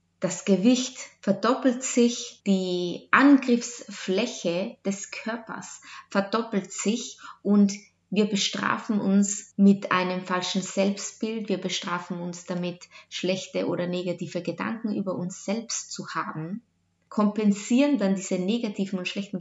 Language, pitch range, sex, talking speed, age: German, 185-230 Hz, female, 115 wpm, 20-39